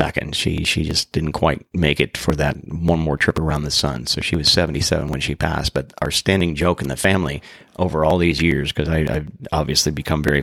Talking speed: 220 wpm